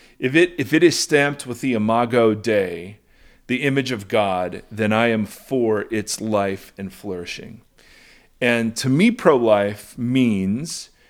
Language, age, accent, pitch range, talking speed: English, 40-59, American, 110-130 Hz, 145 wpm